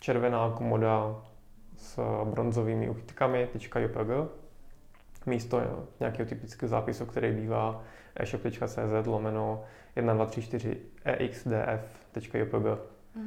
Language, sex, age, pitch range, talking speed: Czech, male, 20-39, 110-120 Hz, 60 wpm